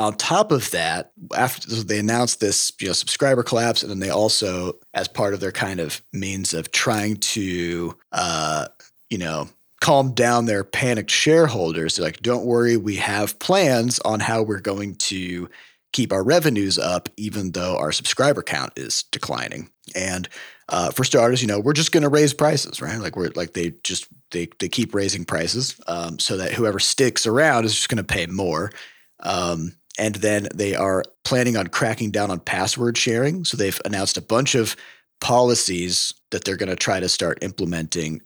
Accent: American